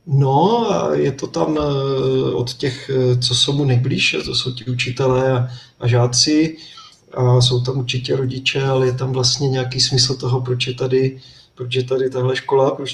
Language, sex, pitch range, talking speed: Czech, male, 125-135 Hz, 165 wpm